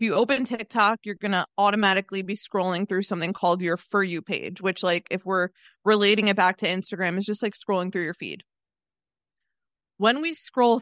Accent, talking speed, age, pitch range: American, 200 wpm, 20-39, 190-225 Hz